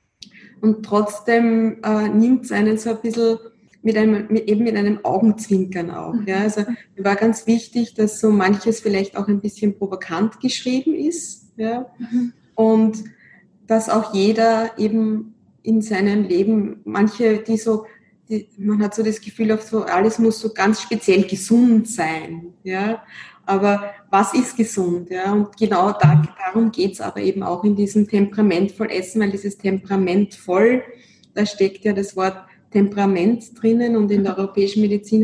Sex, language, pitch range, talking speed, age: female, German, 200-220 Hz, 155 wpm, 20-39